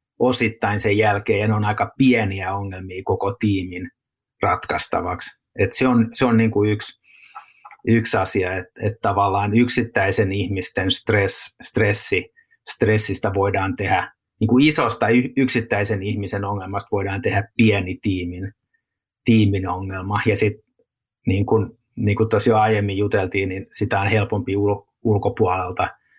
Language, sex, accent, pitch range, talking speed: Finnish, male, native, 95-115 Hz, 130 wpm